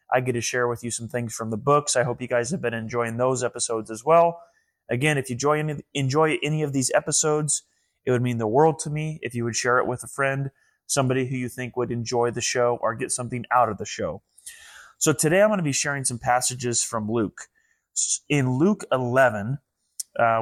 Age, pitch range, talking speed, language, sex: 20-39, 115-135 Hz, 225 wpm, English, male